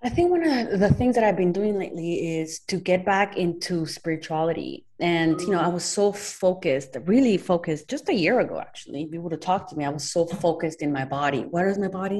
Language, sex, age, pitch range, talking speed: English, female, 30-49, 150-190 Hz, 230 wpm